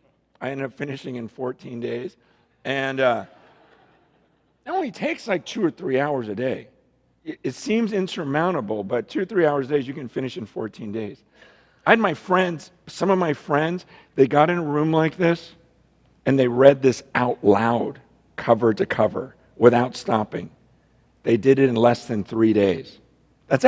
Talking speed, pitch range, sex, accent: 180 wpm, 135-215 Hz, male, American